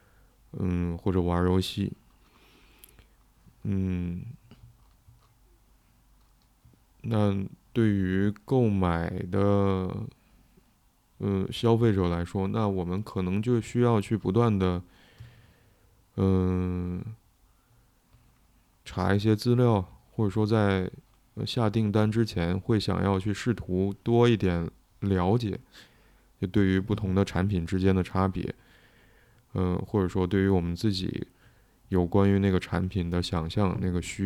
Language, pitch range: Chinese, 90-110 Hz